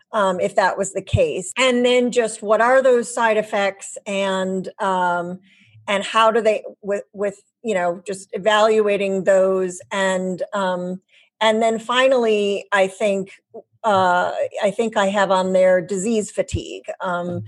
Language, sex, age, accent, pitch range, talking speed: English, female, 40-59, American, 180-215 Hz, 150 wpm